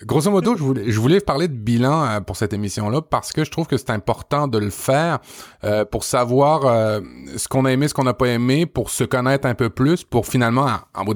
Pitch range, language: 105-135 Hz, French